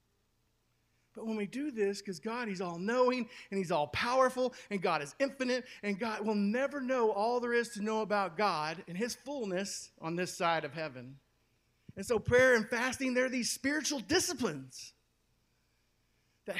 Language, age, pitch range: English, 40-59, 180-250 Hz